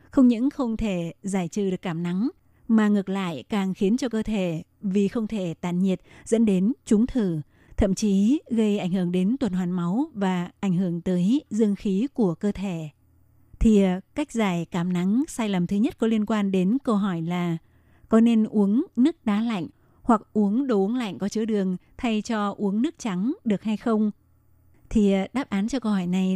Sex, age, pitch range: female, 20-39, 190-230 Hz